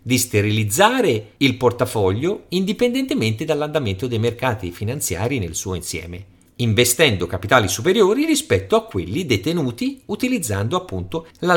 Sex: male